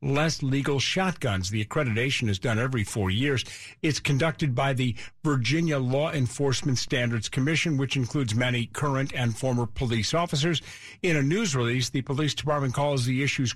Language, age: English, 50-69